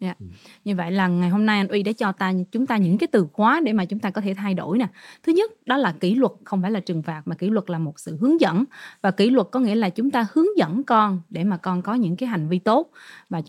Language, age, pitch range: Vietnamese, 20-39, 185-245 Hz